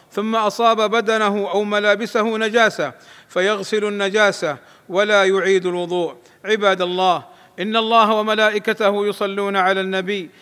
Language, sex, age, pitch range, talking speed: Arabic, male, 50-69, 195-215 Hz, 110 wpm